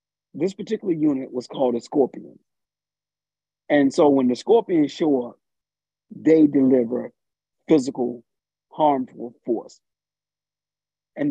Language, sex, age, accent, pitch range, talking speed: English, male, 40-59, American, 130-185 Hz, 105 wpm